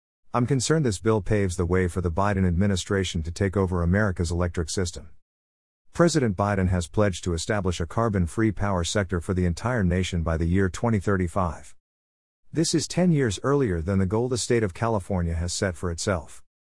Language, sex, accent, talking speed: English, male, American, 185 wpm